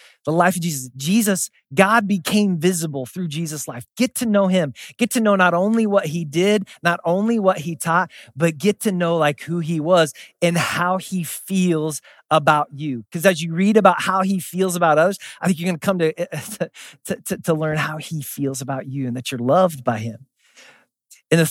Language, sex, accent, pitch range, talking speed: English, male, American, 130-180 Hz, 210 wpm